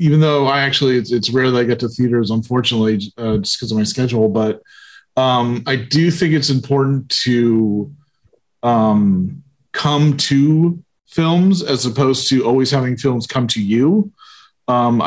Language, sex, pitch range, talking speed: English, male, 115-140 Hz, 165 wpm